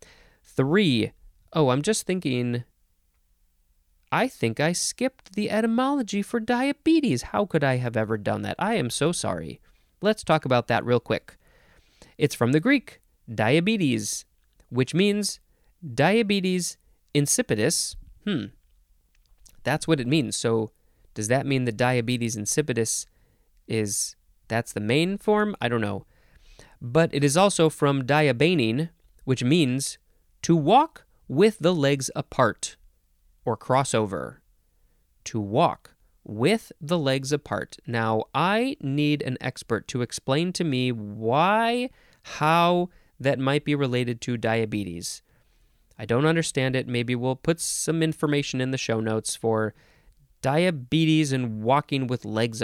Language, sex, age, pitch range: English, male, 30-49, 115-165 Hz